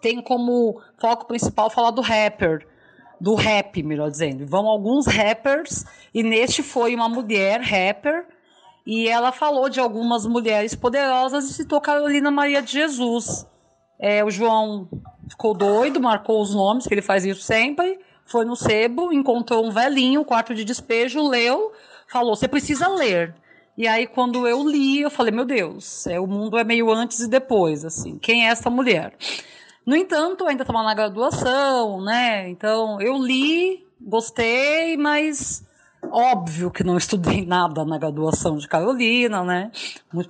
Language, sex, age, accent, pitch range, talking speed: Portuguese, female, 30-49, Brazilian, 200-255 Hz, 160 wpm